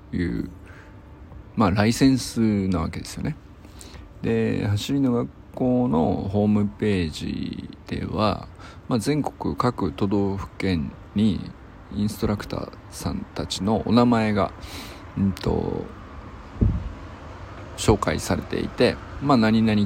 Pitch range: 95-110 Hz